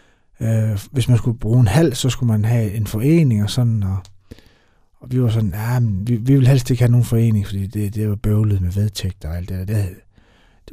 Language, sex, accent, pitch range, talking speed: Danish, male, native, 105-130 Hz, 230 wpm